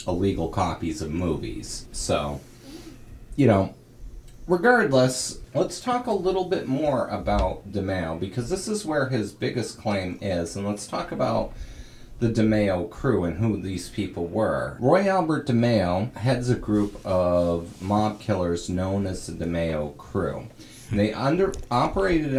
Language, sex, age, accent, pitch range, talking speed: English, male, 30-49, American, 85-125 Hz, 140 wpm